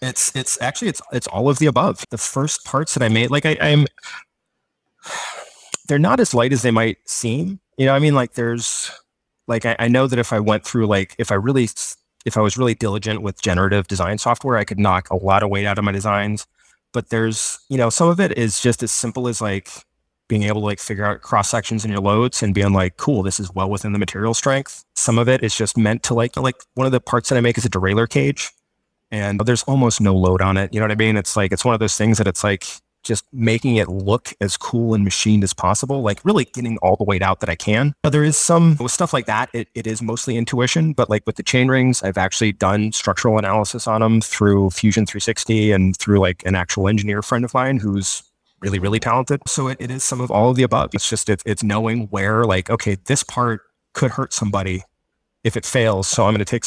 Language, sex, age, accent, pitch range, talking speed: English, male, 20-39, American, 100-125 Hz, 245 wpm